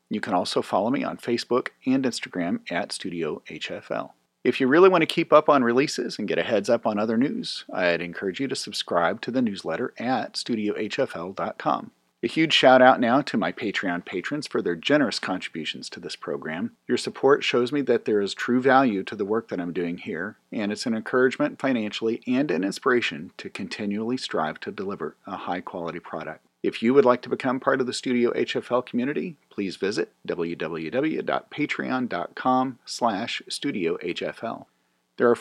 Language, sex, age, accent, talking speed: English, male, 40-59, American, 180 wpm